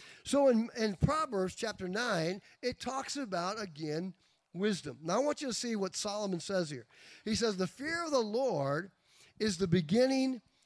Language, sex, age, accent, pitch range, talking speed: English, male, 50-69, American, 180-235 Hz, 175 wpm